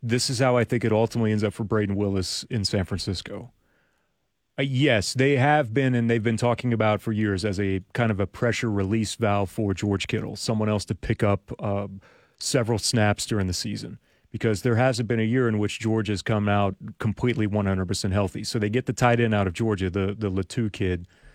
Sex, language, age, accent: male, English, 30-49, American